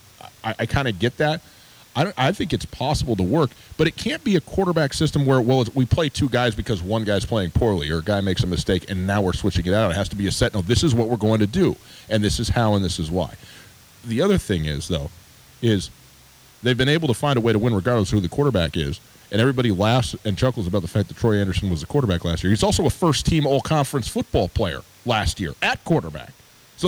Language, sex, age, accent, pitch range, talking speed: English, male, 40-59, American, 105-150 Hz, 260 wpm